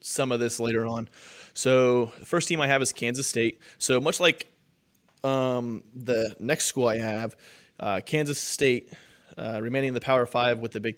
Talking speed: 190 wpm